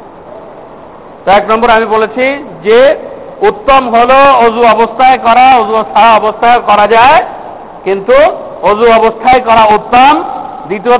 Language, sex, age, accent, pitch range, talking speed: Bengali, male, 50-69, native, 225-275 Hz, 80 wpm